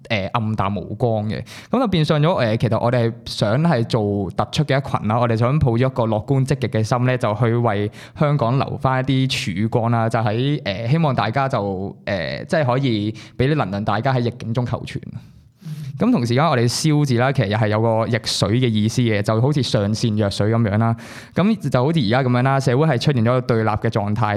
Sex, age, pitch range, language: male, 20-39, 110-135 Hz, Chinese